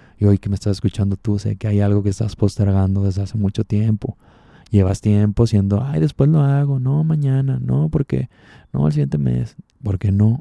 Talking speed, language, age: 200 wpm, Spanish, 20-39